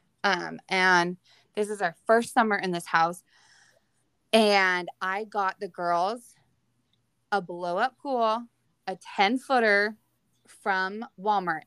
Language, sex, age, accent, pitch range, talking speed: English, female, 20-39, American, 180-225 Hz, 125 wpm